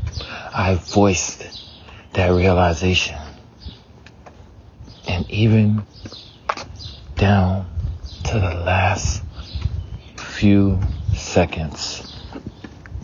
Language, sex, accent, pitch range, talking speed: English, male, American, 90-100 Hz, 55 wpm